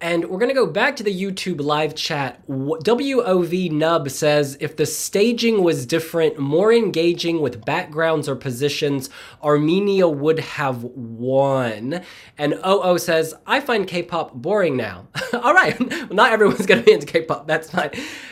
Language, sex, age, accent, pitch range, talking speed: English, male, 20-39, American, 150-215 Hz, 155 wpm